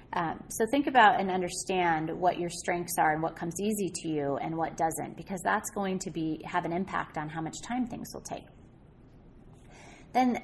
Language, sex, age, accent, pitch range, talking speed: English, female, 30-49, American, 165-200 Hz, 200 wpm